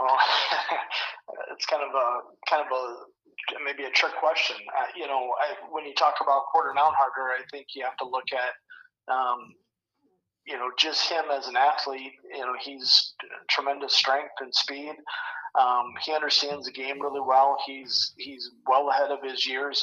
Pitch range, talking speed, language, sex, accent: 130-150 Hz, 170 wpm, English, male, American